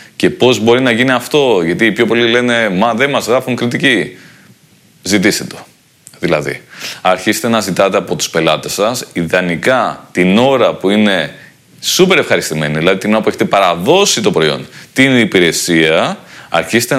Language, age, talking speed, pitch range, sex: Greek, 30-49, 155 wpm, 100-125 Hz, male